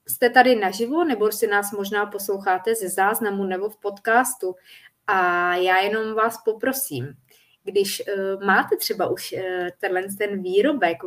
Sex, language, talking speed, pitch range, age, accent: female, Czech, 130 wpm, 175-210 Hz, 20-39, native